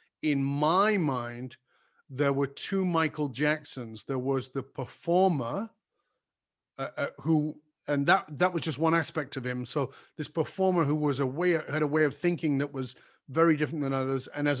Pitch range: 140-190 Hz